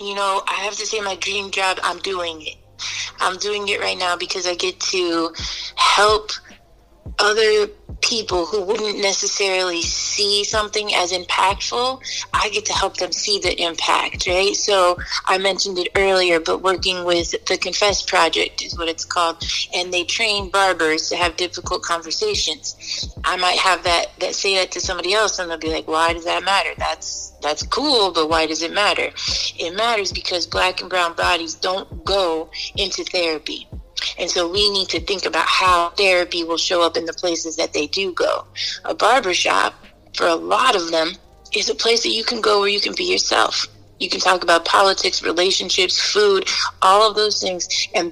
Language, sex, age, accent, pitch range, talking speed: English, female, 30-49, American, 175-215 Hz, 185 wpm